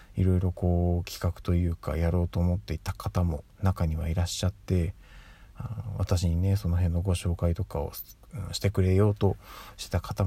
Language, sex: Japanese, male